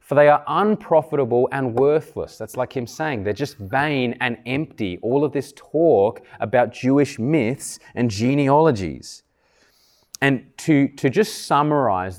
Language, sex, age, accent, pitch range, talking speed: English, male, 20-39, Australian, 115-160 Hz, 145 wpm